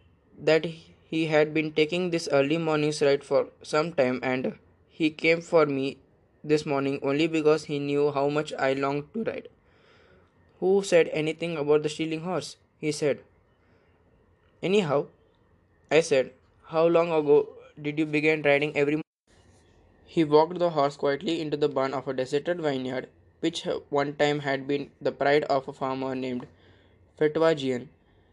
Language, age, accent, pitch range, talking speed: English, 20-39, Indian, 130-160 Hz, 155 wpm